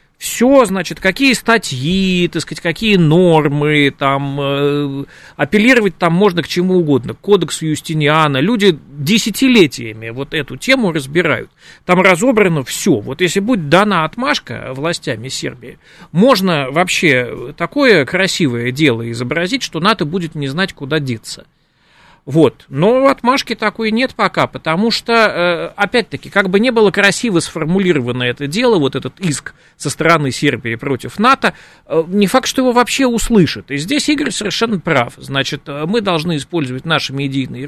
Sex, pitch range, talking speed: male, 145-205 Hz, 145 wpm